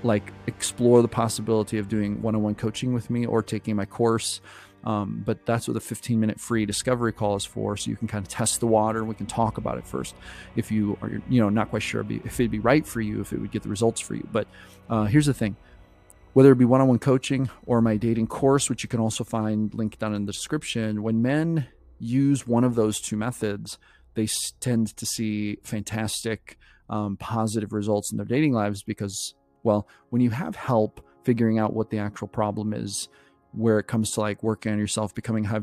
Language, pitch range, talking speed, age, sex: English, 105-115 Hz, 220 wpm, 30-49, male